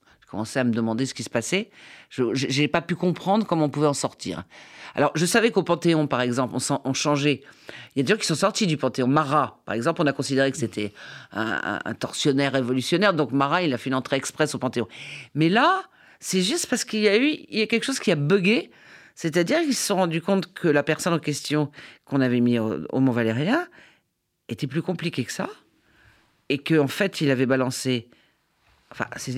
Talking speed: 225 wpm